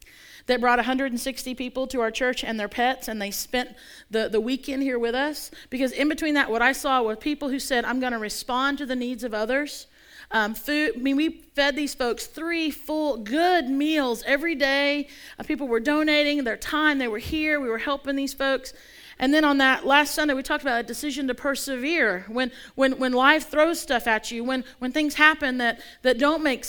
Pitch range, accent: 235-295 Hz, American